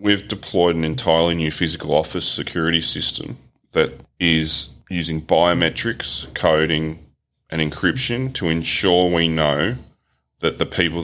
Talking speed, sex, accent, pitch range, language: 125 wpm, male, Australian, 80-90 Hz, English